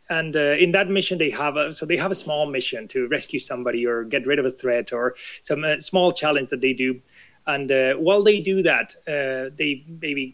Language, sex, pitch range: English, male, 140-185 Hz